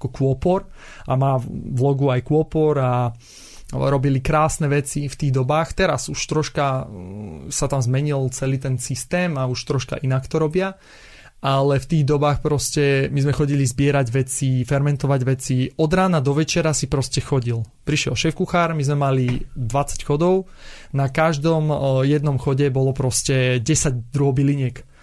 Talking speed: 160 wpm